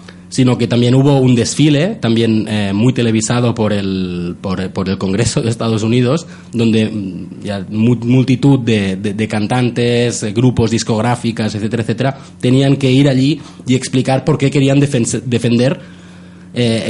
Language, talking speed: Spanish, 155 wpm